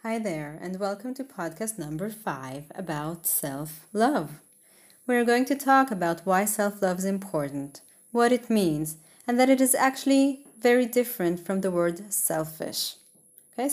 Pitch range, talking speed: 175-250 Hz, 150 wpm